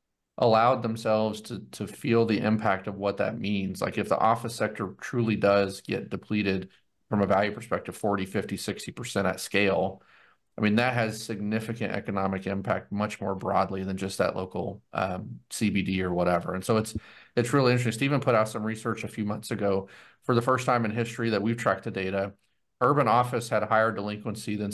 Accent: American